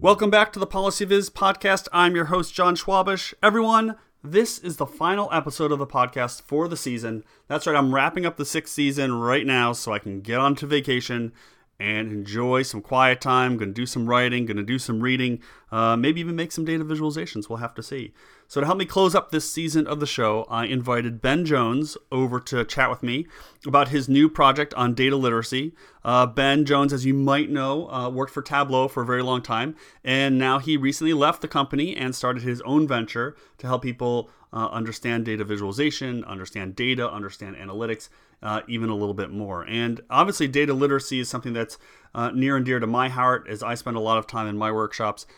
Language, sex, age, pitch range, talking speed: English, male, 30-49, 115-145 Hz, 210 wpm